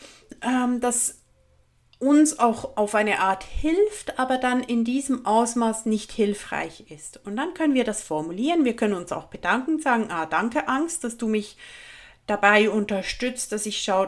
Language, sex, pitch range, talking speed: German, female, 215-275 Hz, 160 wpm